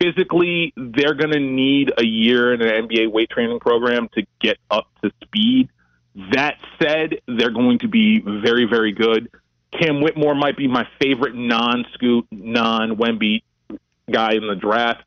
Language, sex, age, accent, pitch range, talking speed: English, male, 30-49, American, 115-150 Hz, 155 wpm